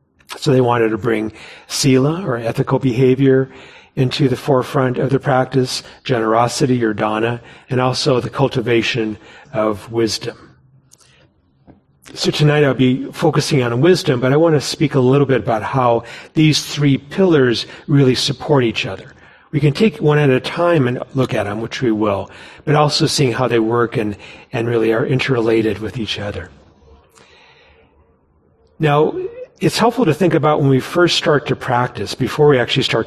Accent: American